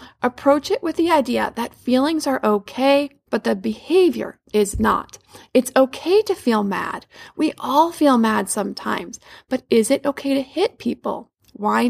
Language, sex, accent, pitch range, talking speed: English, female, American, 235-295 Hz, 160 wpm